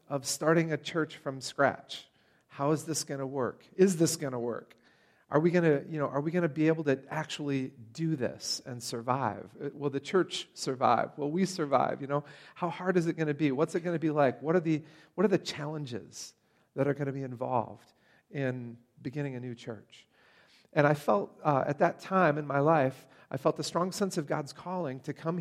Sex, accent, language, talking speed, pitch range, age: male, American, English, 225 wpm, 140-165 Hz, 40-59